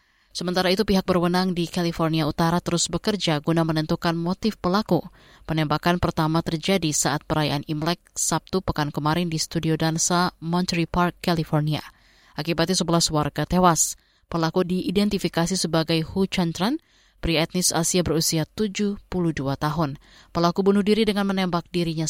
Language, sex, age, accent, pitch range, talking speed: Indonesian, female, 20-39, native, 160-185 Hz, 135 wpm